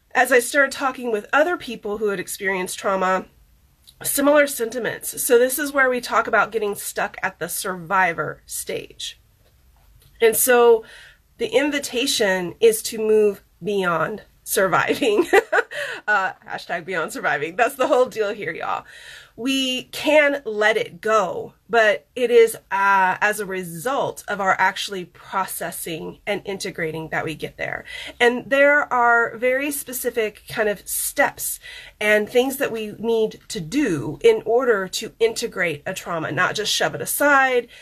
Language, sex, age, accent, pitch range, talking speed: English, female, 30-49, American, 190-255 Hz, 150 wpm